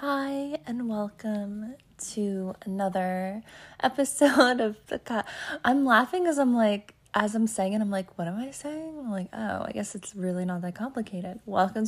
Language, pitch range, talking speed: English, 190-250 Hz, 175 wpm